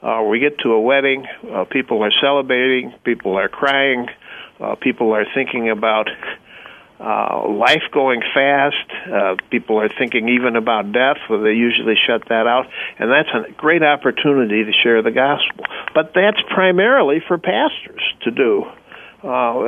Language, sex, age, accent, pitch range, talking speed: English, male, 60-79, American, 125-160 Hz, 155 wpm